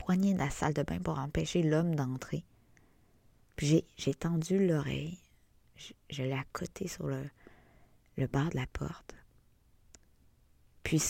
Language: French